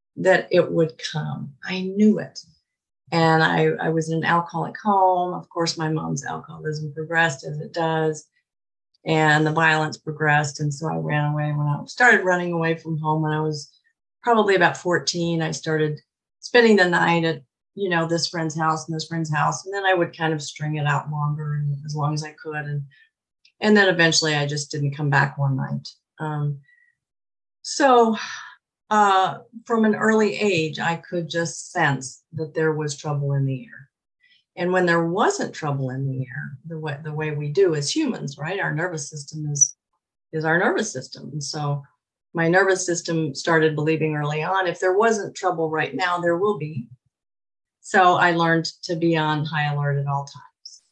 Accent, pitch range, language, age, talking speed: American, 150-175 Hz, English, 40-59, 190 wpm